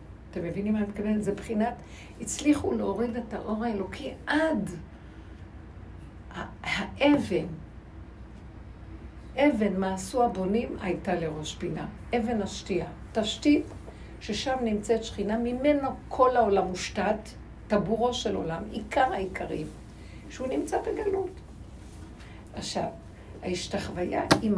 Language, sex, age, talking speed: Hebrew, female, 60-79, 100 wpm